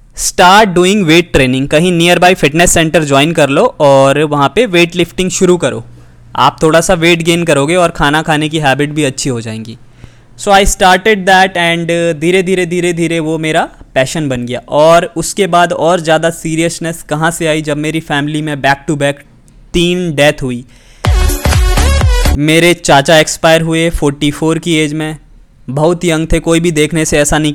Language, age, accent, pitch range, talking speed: Hindi, 20-39, native, 140-165 Hz, 185 wpm